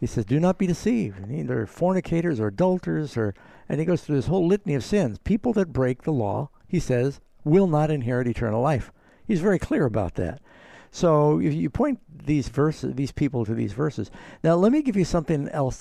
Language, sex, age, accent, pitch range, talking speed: English, male, 60-79, American, 110-165 Hz, 215 wpm